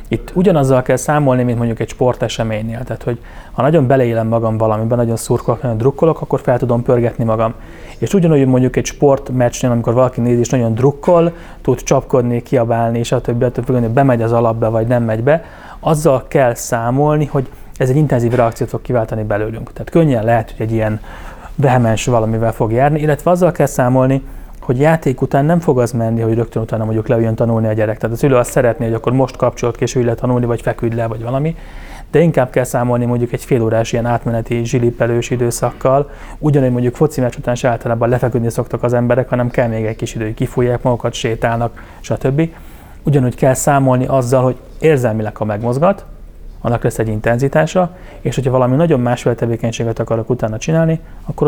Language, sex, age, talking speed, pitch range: Hungarian, male, 30-49, 185 wpm, 115-135 Hz